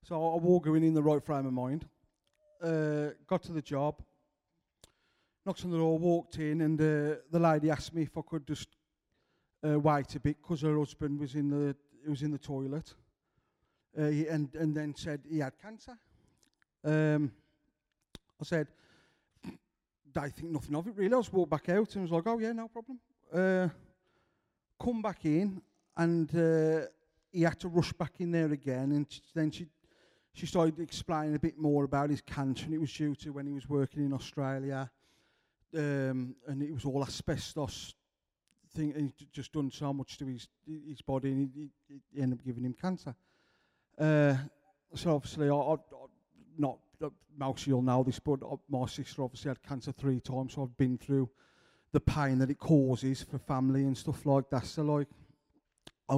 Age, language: 40-59, English